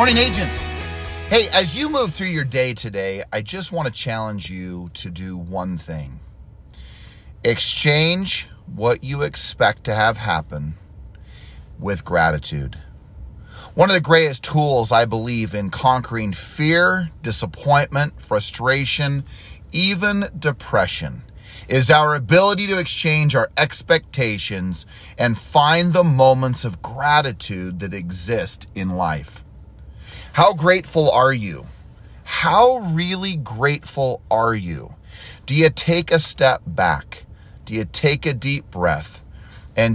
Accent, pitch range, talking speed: American, 95-155 Hz, 125 wpm